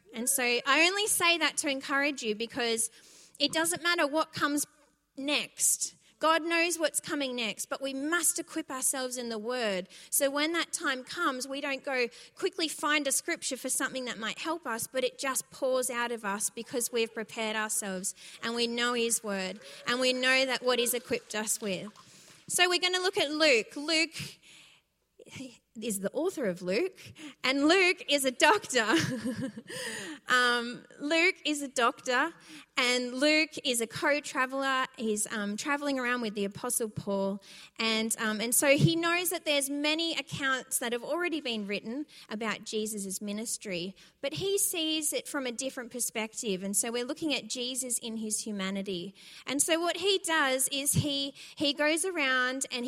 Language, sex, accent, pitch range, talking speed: English, female, Australian, 220-295 Hz, 175 wpm